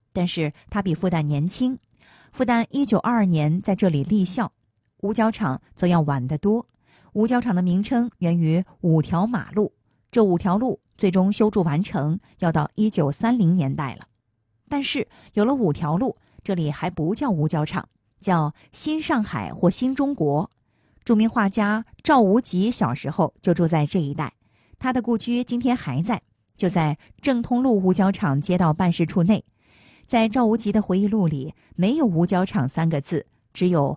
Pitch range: 160-220 Hz